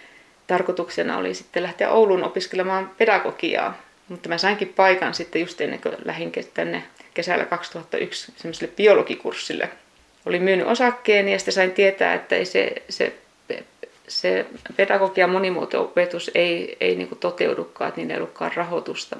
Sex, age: female, 30-49